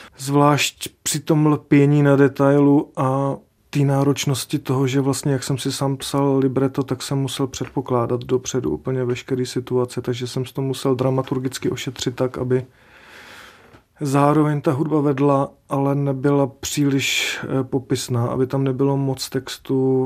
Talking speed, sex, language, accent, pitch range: 145 wpm, male, Czech, native, 125-135 Hz